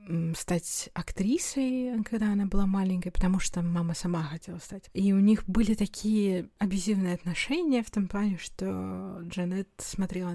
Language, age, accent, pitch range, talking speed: Russian, 20-39, native, 175-200 Hz, 145 wpm